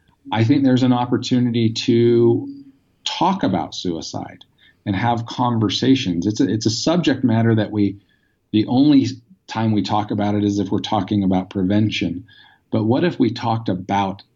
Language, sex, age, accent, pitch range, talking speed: English, male, 40-59, American, 95-120 Hz, 160 wpm